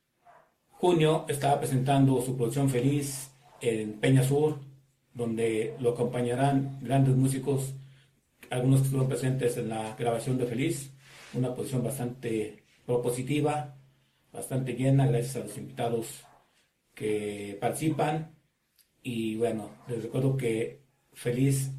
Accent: Mexican